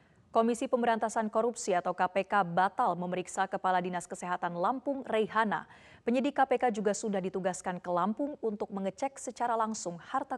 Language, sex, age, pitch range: Indonesian, female, 20-39, 185-225 Hz